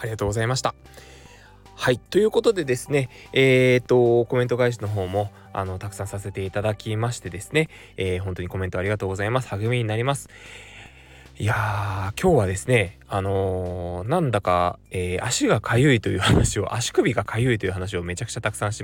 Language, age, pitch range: Japanese, 20-39, 95-140 Hz